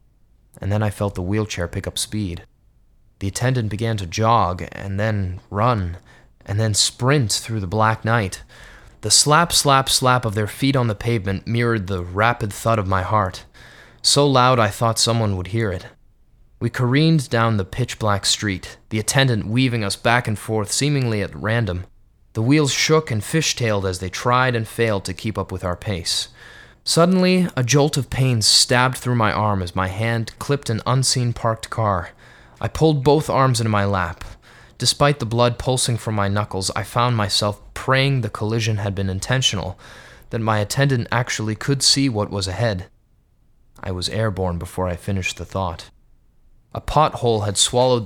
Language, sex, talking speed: English, male, 175 wpm